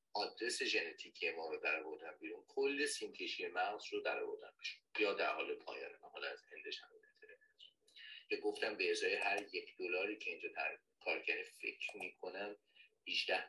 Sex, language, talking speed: male, Persian, 135 wpm